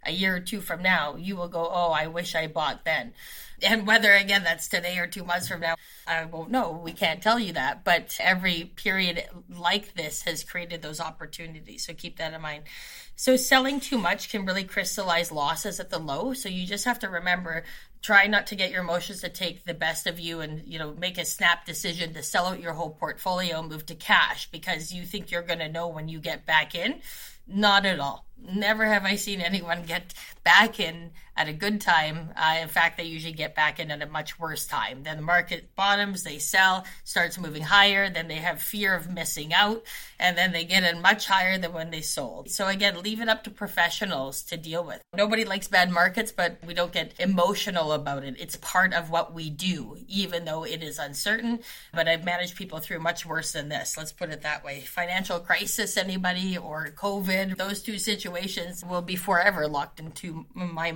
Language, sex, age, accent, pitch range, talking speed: English, female, 20-39, American, 160-195 Hz, 215 wpm